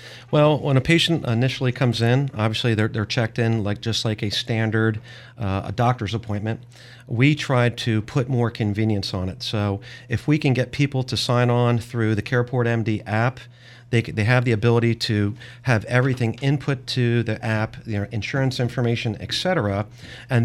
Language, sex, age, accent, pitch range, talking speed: English, male, 40-59, American, 110-125 Hz, 185 wpm